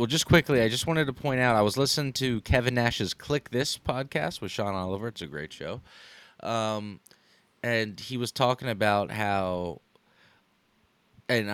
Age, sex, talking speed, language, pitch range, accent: 20-39, male, 170 wpm, English, 100-125 Hz, American